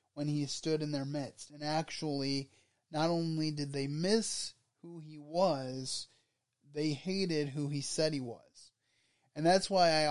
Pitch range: 140-165 Hz